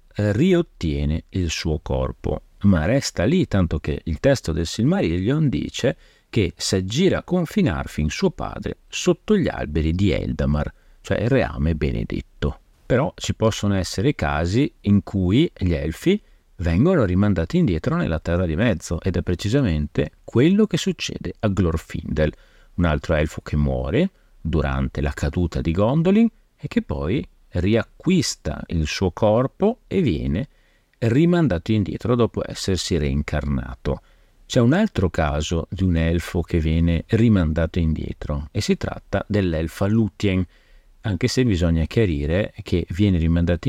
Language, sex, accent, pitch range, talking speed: Italian, male, native, 80-110 Hz, 140 wpm